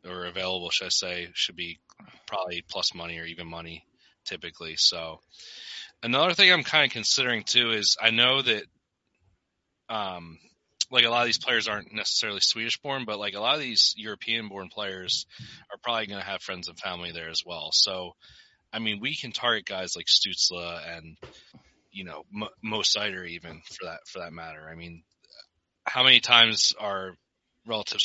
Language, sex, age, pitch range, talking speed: English, male, 20-39, 85-105 Hz, 180 wpm